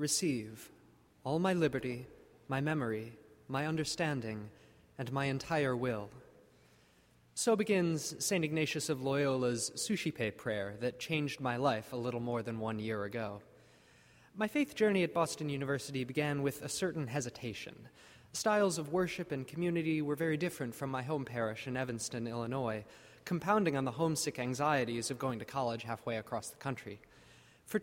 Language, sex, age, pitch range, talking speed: English, male, 20-39, 120-165 Hz, 155 wpm